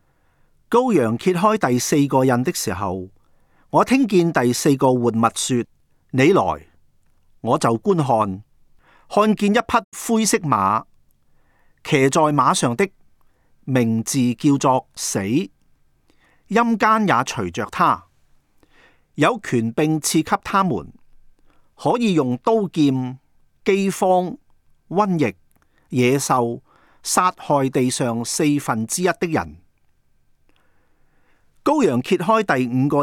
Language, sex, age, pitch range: Chinese, male, 40-59, 115-185 Hz